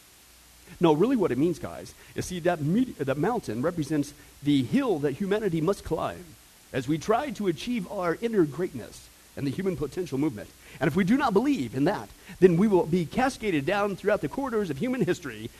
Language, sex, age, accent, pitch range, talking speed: English, male, 40-59, American, 150-240 Hz, 200 wpm